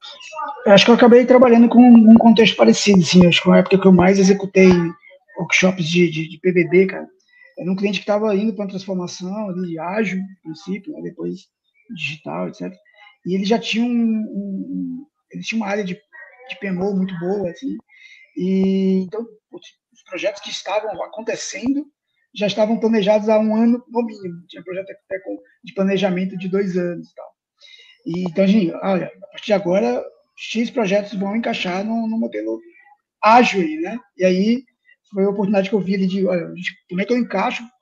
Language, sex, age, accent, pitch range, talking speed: Portuguese, male, 20-39, Brazilian, 185-240 Hz, 185 wpm